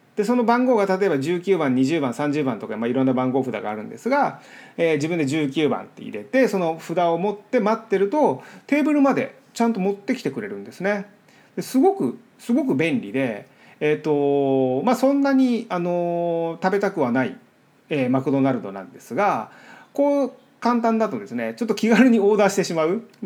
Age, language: 30-49, Japanese